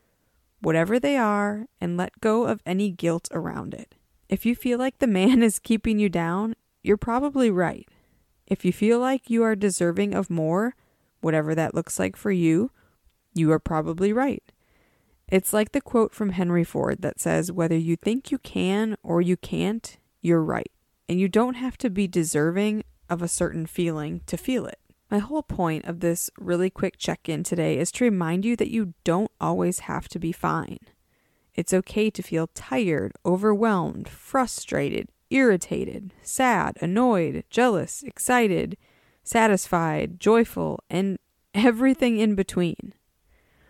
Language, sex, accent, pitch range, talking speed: English, female, American, 170-230 Hz, 160 wpm